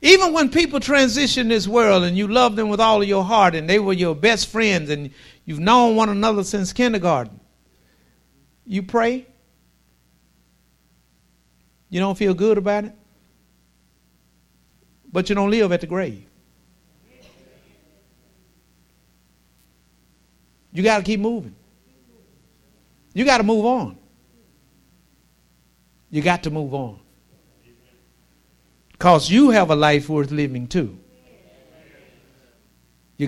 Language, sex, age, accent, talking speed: English, male, 60-79, American, 120 wpm